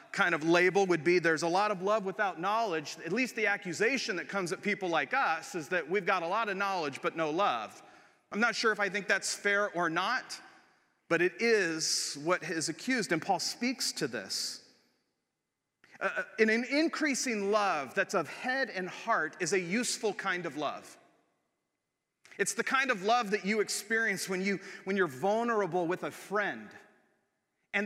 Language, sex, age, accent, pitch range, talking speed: English, male, 40-59, American, 185-230 Hz, 185 wpm